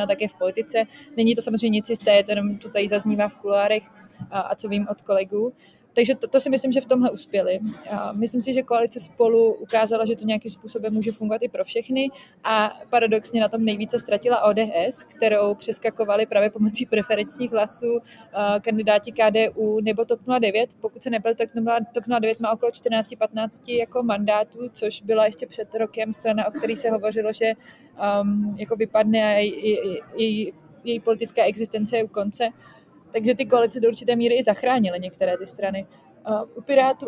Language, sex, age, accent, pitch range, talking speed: Czech, female, 20-39, native, 205-230 Hz, 175 wpm